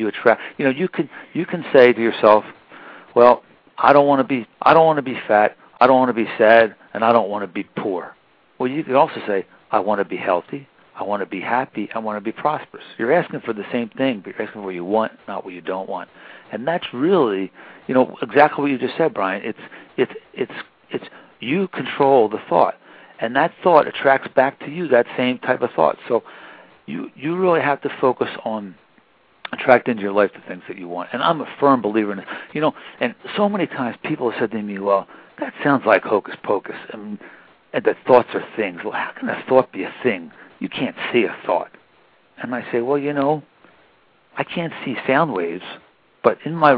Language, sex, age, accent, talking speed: English, male, 60-79, American, 225 wpm